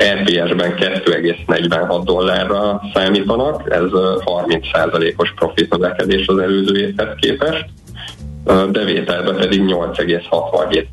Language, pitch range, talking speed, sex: Hungarian, 85-95 Hz, 80 wpm, male